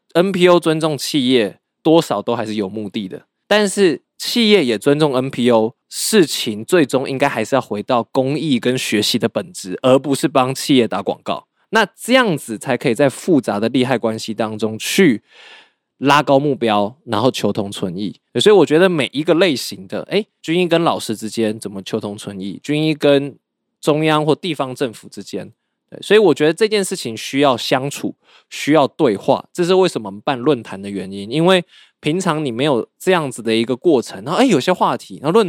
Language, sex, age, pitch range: Chinese, male, 20-39, 110-155 Hz